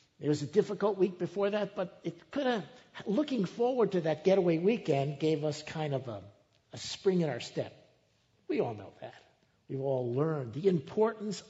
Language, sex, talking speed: English, male, 190 wpm